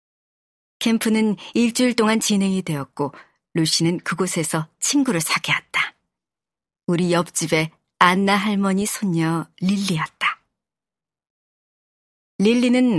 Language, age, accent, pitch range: Korean, 40-59, native, 160-225 Hz